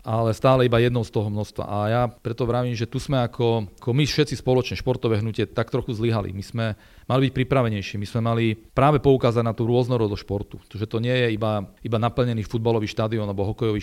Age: 40-59